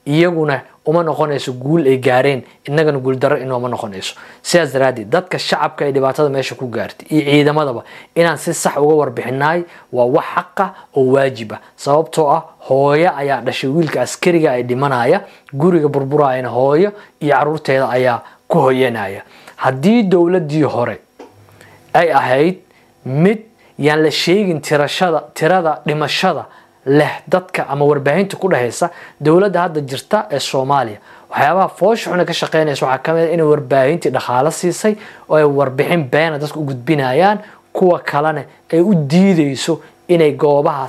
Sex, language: male, Finnish